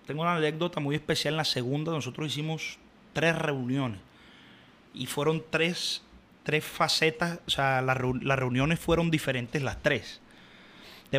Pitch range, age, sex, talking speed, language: 140-185 Hz, 30-49, male, 140 wpm, Spanish